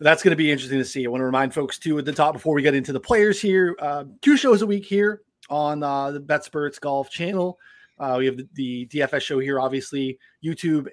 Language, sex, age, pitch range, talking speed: English, male, 20-39, 130-165 Hz, 245 wpm